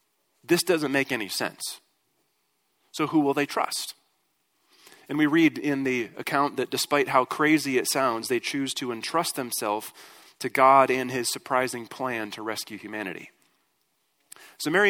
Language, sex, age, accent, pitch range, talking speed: English, male, 30-49, American, 130-165 Hz, 155 wpm